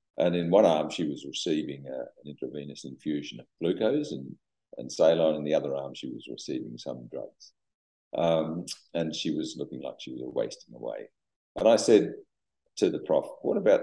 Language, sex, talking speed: English, male, 185 wpm